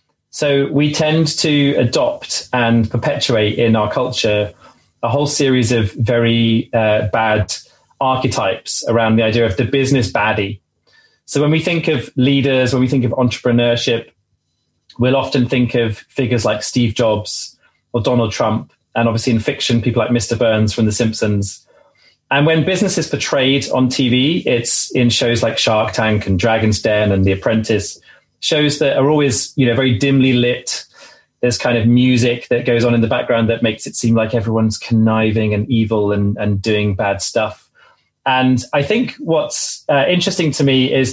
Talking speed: 175 wpm